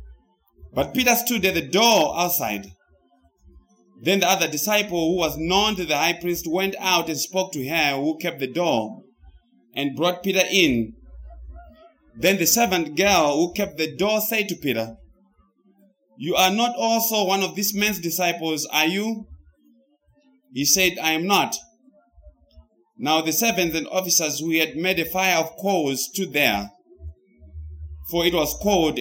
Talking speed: 160 wpm